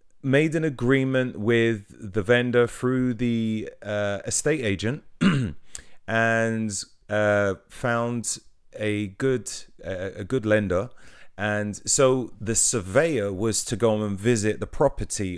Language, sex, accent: English, male, British